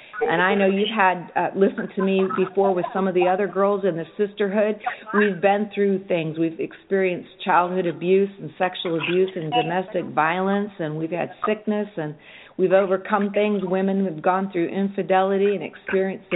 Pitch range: 175-205 Hz